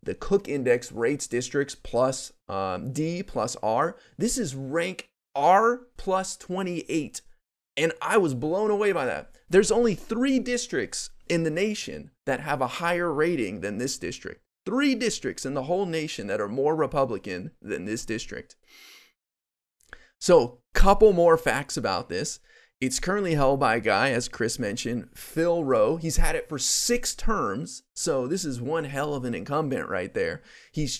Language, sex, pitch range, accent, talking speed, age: English, male, 130-195 Hz, American, 165 wpm, 30-49